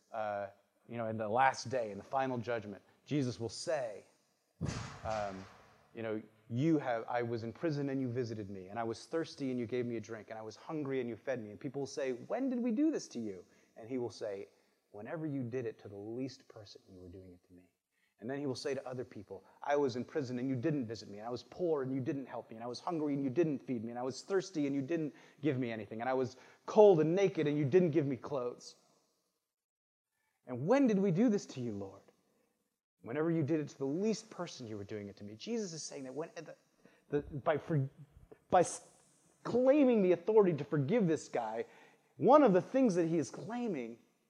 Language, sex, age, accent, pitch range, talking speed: English, male, 30-49, American, 115-170 Hz, 240 wpm